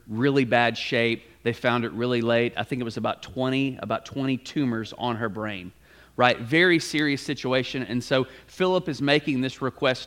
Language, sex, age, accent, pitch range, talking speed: English, male, 30-49, American, 120-145 Hz, 185 wpm